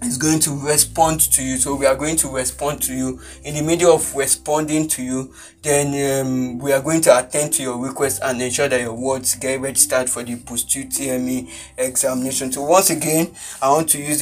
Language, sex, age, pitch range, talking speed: English, male, 20-39, 130-150 Hz, 210 wpm